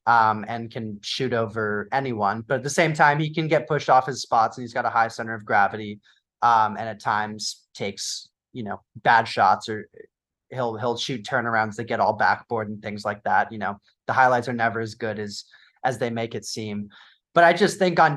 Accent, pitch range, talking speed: American, 115-140 Hz, 220 wpm